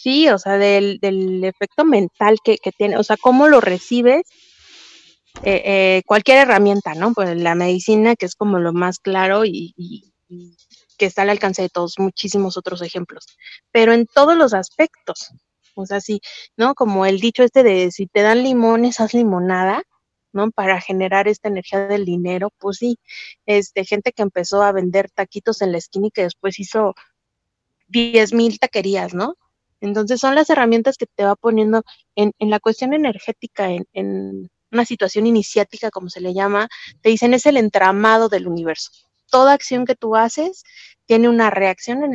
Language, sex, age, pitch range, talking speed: Spanish, female, 30-49, 190-230 Hz, 180 wpm